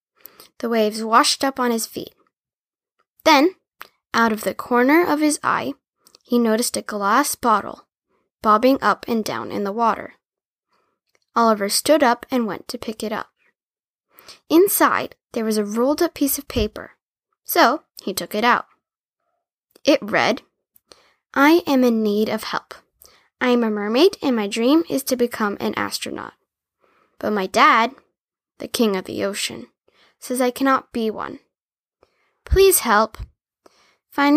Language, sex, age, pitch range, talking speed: English, female, 10-29, 215-285 Hz, 150 wpm